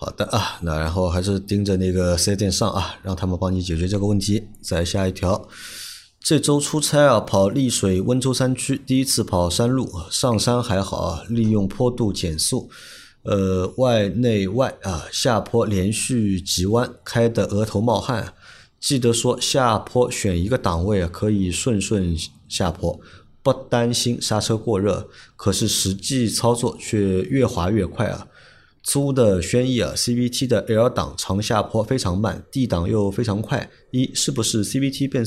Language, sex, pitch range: Chinese, male, 95-120 Hz